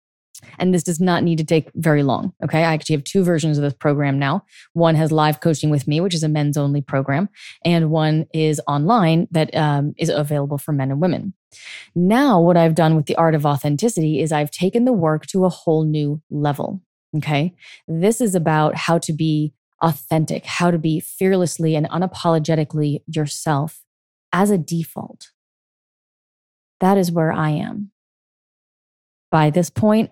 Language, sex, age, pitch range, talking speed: English, female, 20-39, 150-175 Hz, 175 wpm